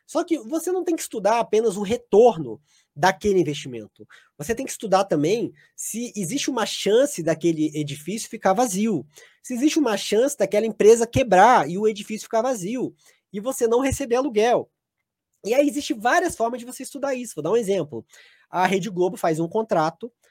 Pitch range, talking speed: 155-230 Hz, 180 wpm